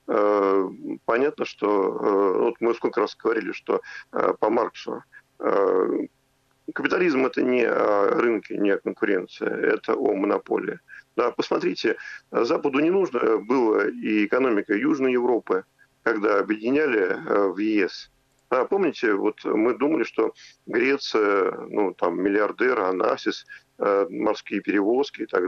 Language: Russian